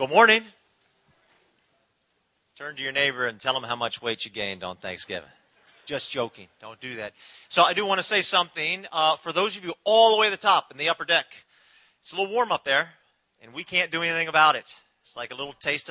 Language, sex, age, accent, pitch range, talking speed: English, male, 40-59, American, 135-180 Hz, 230 wpm